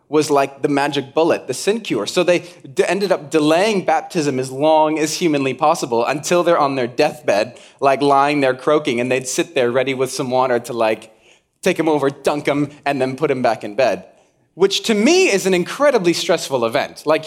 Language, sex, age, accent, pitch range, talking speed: English, male, 20-39, American, 130-170 Hz, 210 wpm